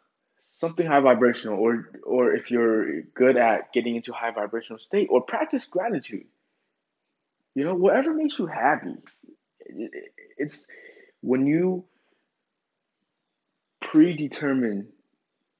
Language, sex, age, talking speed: English, male, 20-39, 105 wpm